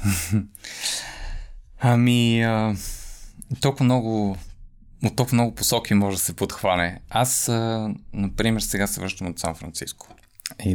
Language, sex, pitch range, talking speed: Bulgarian, male, 95-120 Hz, 110 wpm